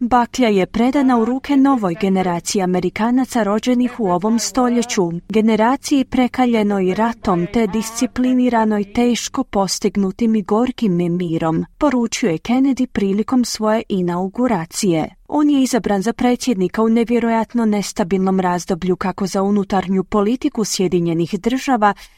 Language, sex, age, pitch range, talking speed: Croatian, female, 30-49, 185-245 Hz, 115 wpm